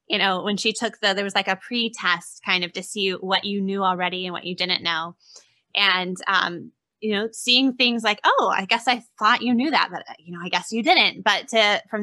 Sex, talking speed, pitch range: female, 245 wpm, 180-215 Hz